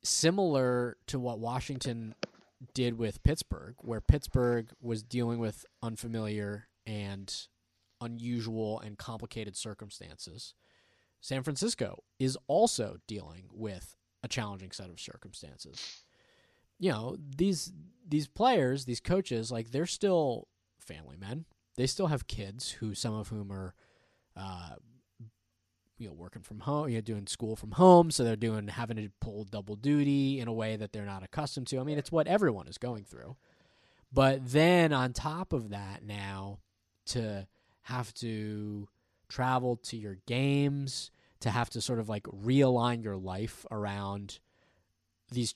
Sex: male